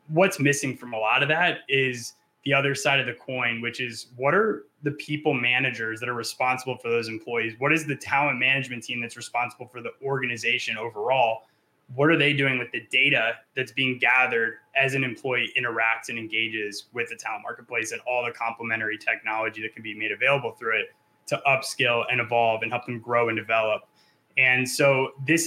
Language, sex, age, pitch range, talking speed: English, male, 20-39, 115-135 Hz, 200 wpm